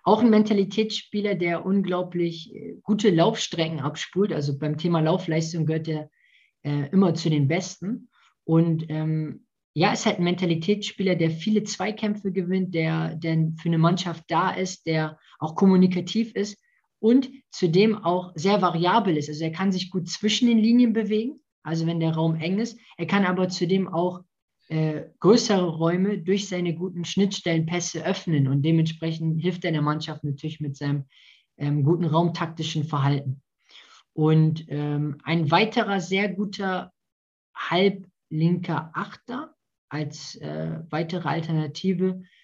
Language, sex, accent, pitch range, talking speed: German, male, German, 155-190 Hz, 140 wpm